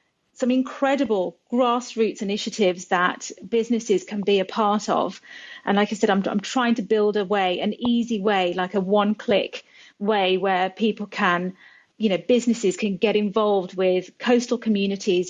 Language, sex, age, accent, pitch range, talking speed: English, female, 30-49, British, 195-245 Hz, 160 wpm